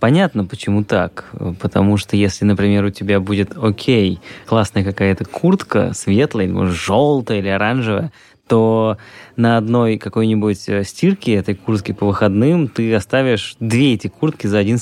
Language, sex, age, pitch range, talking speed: Russian, male, 20-39, 105-135 Hz, 140 wpm